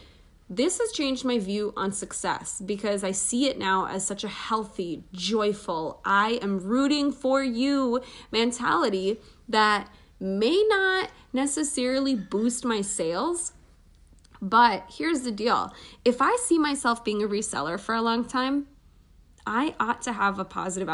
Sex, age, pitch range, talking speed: female, 20-39, 195-270 Hz, 145 wpm